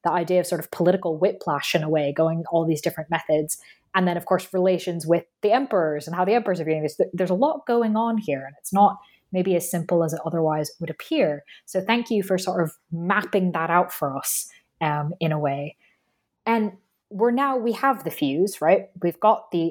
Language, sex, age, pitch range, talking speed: English, female, 20-39, 165-205 Hz, 220 wpm